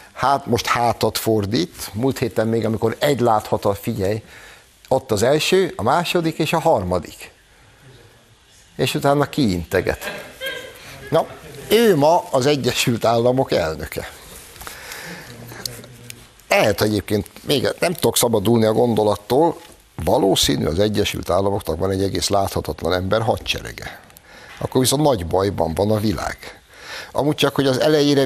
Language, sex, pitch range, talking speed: Hungarian, male, 95-125 Hz, 125 wpm